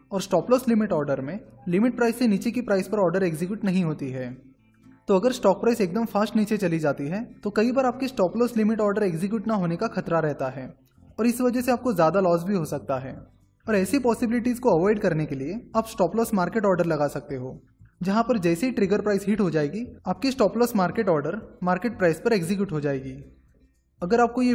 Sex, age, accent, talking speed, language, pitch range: male, 20-39, native, 225 wpm, Hindi, 160-225 Hz